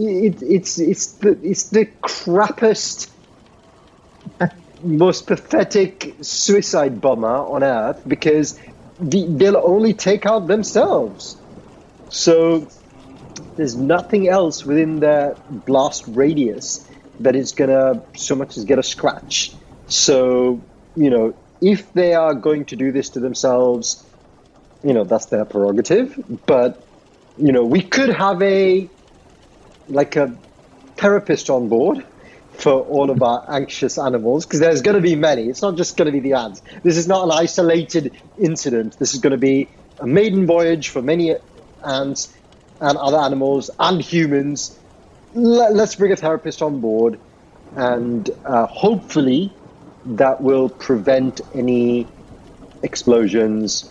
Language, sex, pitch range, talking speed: English, male, 130-190 Hz, 135 wpm